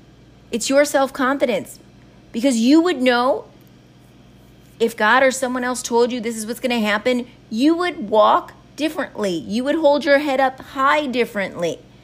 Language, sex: English, female